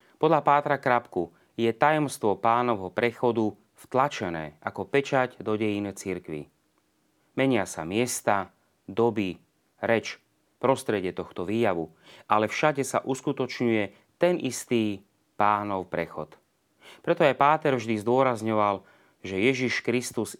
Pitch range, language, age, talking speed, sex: 95-120 Hz, Slovak, 30-49, 110 wpm, male